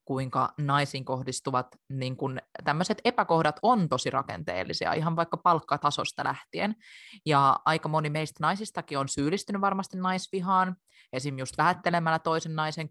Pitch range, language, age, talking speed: 130-155 Hz, Finnish, 20-39, 120 wpm